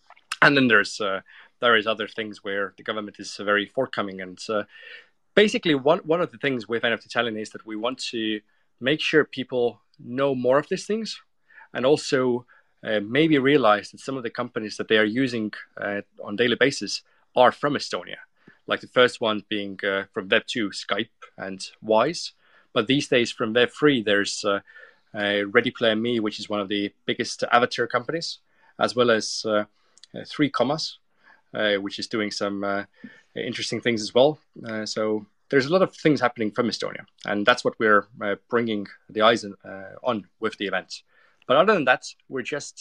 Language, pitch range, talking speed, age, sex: English, 105-140 Hz, 190 wpm, 30-49, male